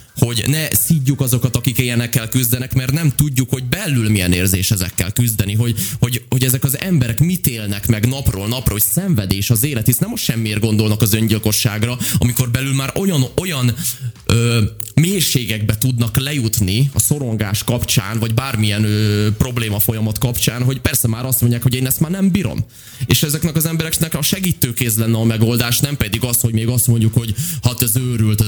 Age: 20-39